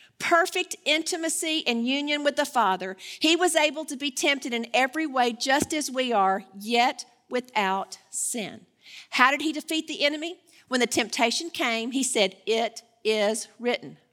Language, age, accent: English, 50-69, American